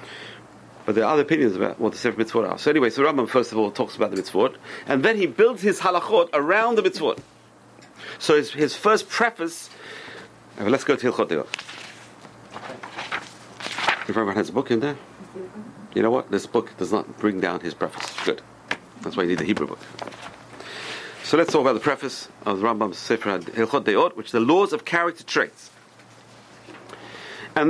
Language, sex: English, male